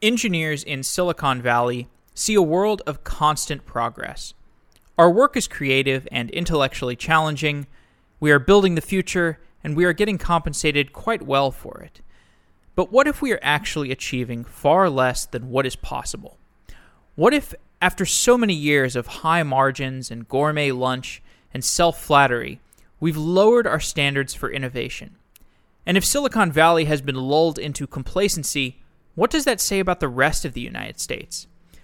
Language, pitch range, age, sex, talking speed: English, 135-180 Hz, 20-39, male, 160 wpm